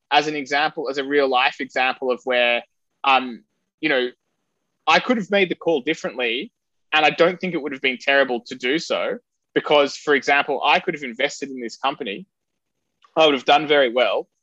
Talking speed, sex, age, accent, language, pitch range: 195 wpm, male, 20-39, Australian, English, 130-175 Hz